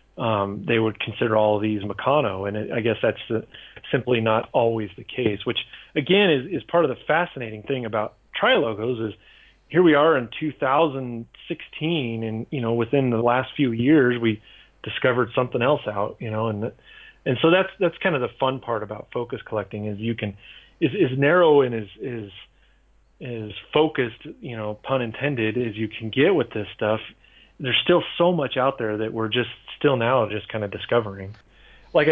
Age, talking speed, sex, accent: 30-49, 190 wpm, male, American